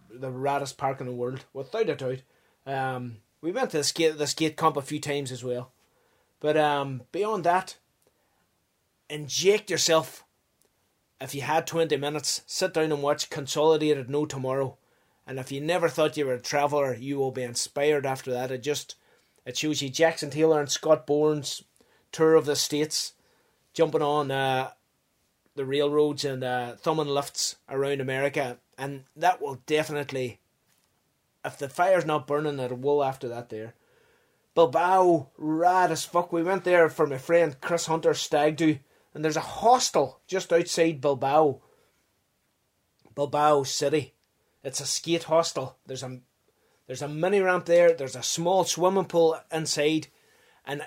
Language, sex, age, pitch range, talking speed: English, male, 30-49, 135-165 Hz, 160 wpm